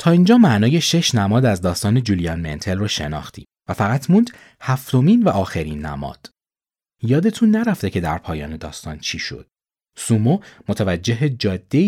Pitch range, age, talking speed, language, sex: 85-135 Hz, 30-49, 145 wpm, Persian, male